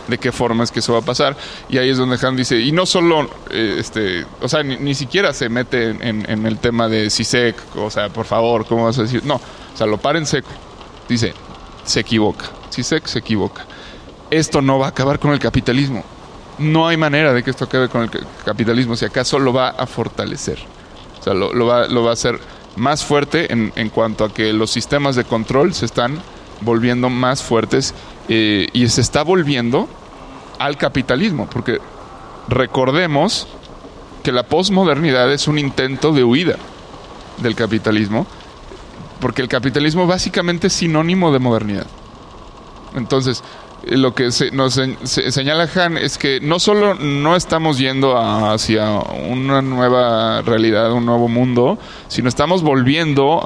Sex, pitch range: male, 115-140 Hz